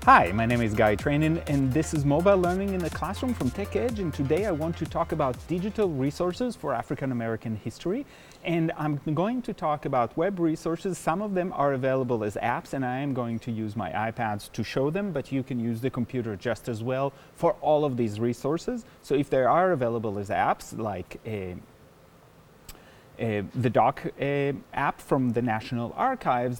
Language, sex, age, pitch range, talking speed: English, male, 30-49, 115-165 Hz, 200 wpm